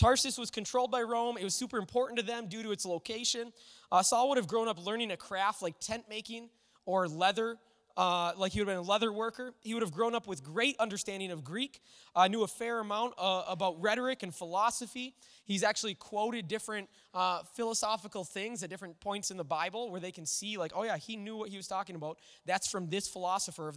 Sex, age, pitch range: male, 20-39, 190-235 Hz